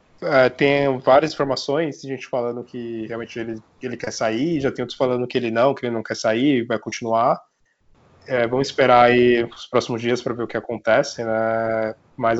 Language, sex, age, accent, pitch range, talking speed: Portuguese, male, 20-39, Brazilian, 115-135 Hz, 200 wpm